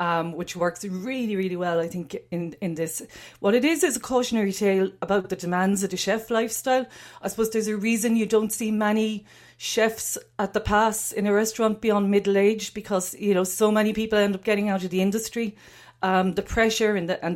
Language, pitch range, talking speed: English, 170-210 Hz, 220 wpm